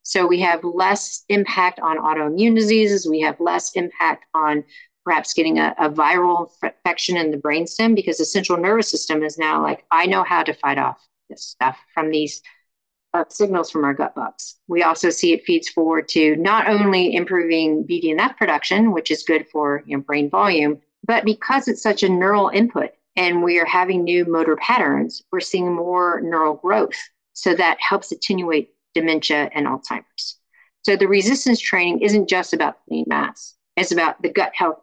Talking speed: 185 wpm